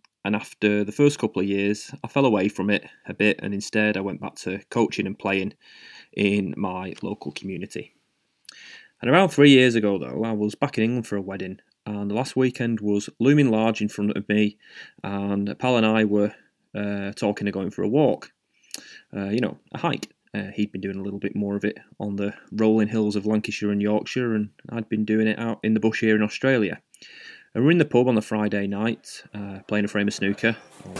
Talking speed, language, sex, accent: 225 wpm, English, male, British